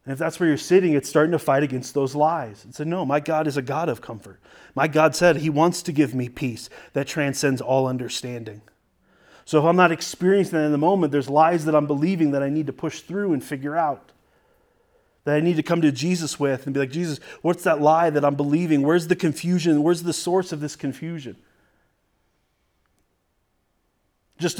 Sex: male